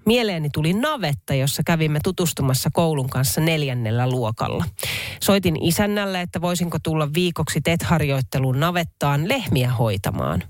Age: 40-59